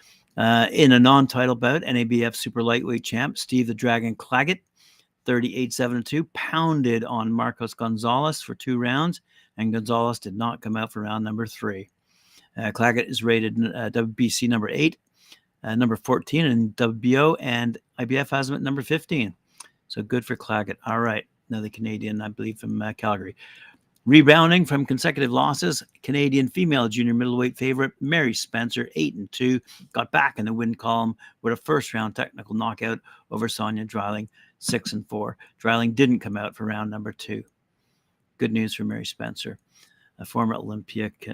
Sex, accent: male, American